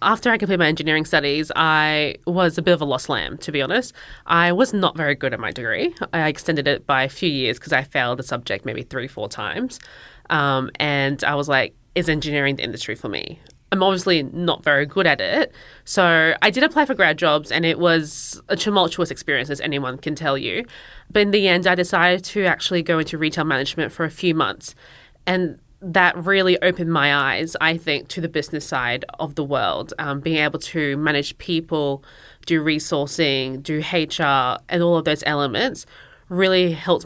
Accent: Australian